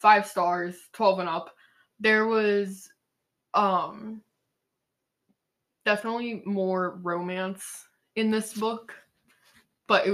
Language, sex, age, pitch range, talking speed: English, female, 20-39, 180-210 Hz, 95 wpm